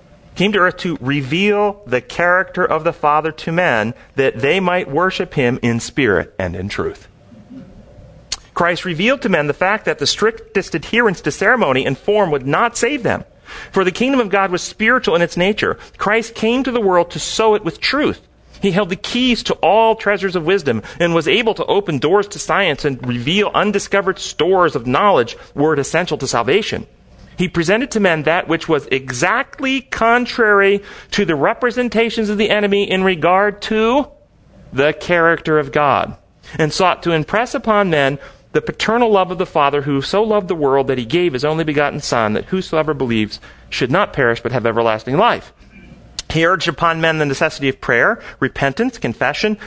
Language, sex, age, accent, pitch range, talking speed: English, male, 40-59, American, 150-210 Hz, 185 wpm